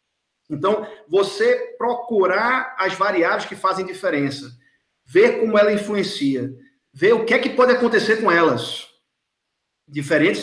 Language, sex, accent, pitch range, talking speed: Portuguese, male, Brazilian, 175-235 Hz, 125 wpm